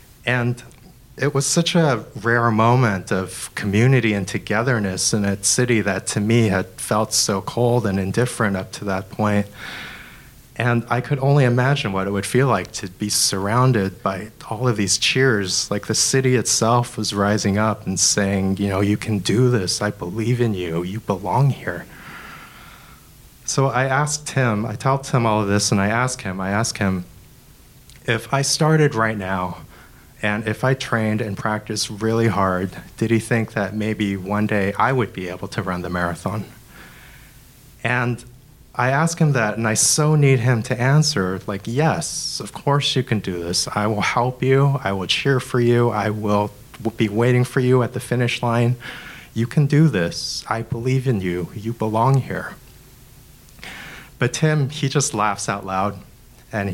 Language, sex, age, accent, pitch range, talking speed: English, male, 30-49, American, 100-130 Hz, 180 wpm